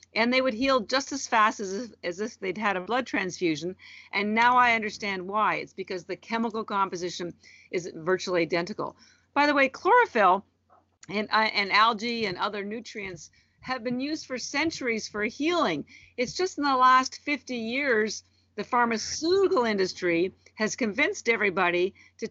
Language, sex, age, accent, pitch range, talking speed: English, female, 50-69, American, 180-235 Hz, 160 wpm